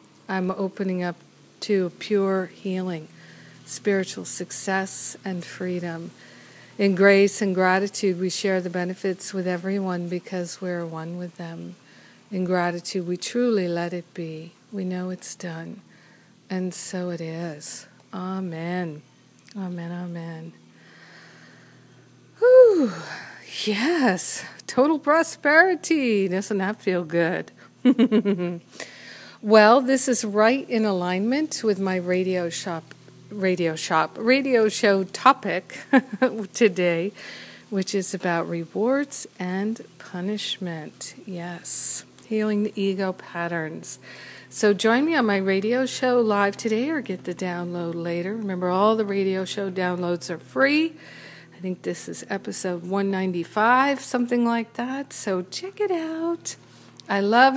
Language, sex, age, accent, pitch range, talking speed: English, female, 50-69, American, 180-225 Hz, 120 wpm